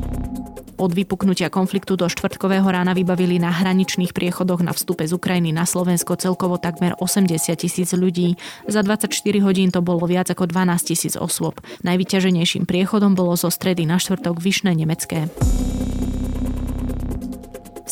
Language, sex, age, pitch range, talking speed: Slovak, female, 20-39, 165-185 Hz, 135 wpm